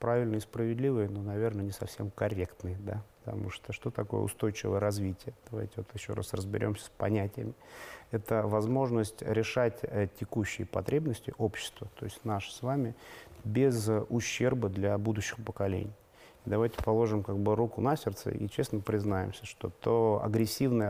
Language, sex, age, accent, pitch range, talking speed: Russian, male, 30-49, native, 100-115 Hz, 140 wpm